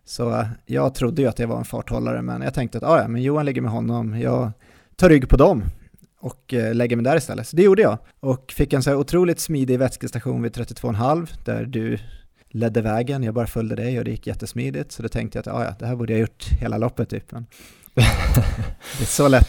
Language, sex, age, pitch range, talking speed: Swedish, male, 30-49, 120-145 Hz, 220 wpm